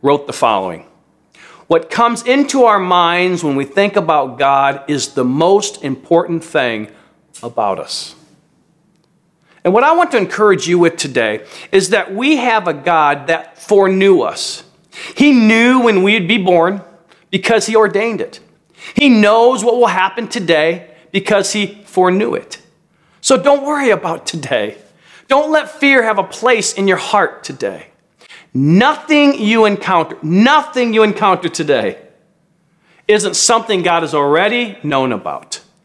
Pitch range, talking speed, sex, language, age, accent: 150-210 Hz, 145 wpm, male, English, 40-59, American